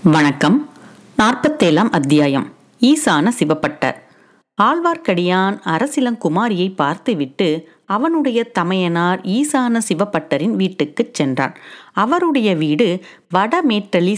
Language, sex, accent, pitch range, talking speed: Tamil, female, native, 170-270 Hz, 70 wpm